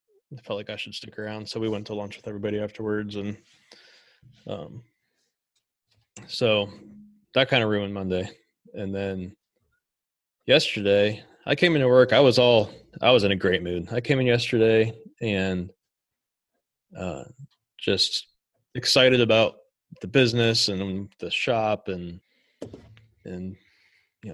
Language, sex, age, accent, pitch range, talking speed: English, male, 20-39, American, 100-120 Hz, 135 wpm